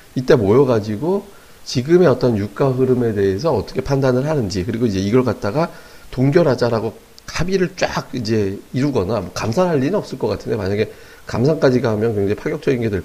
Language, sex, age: Korean, male, 40-59